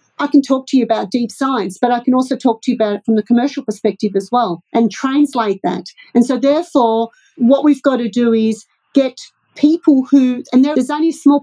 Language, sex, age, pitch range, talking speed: English, female, 50-69, 230-280 Hz, 225 wpm